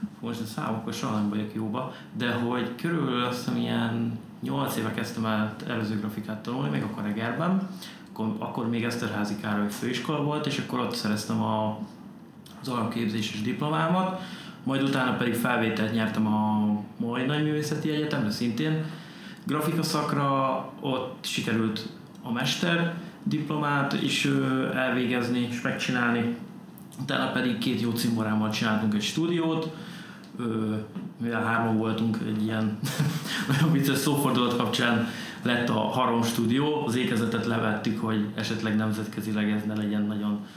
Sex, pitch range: male, 110-150 Hz